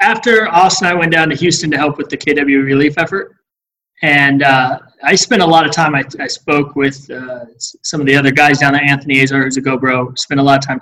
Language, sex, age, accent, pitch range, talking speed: English, male, 30-49, American, 130-155 Hz, 245 wpm